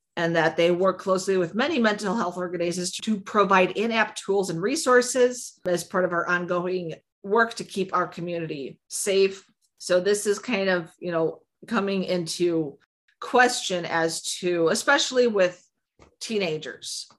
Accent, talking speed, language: American, 145 wpm, English